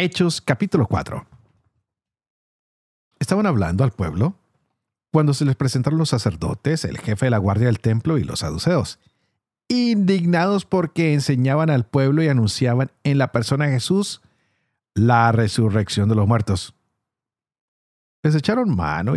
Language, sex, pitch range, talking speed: Spanish, male, 105-145 Hz, 135 wpm